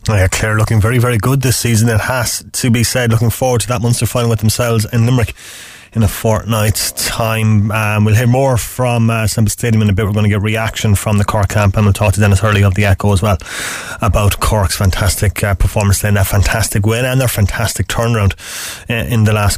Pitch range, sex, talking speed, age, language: 100-115 Hz, male, 230 wpm, 30-49, English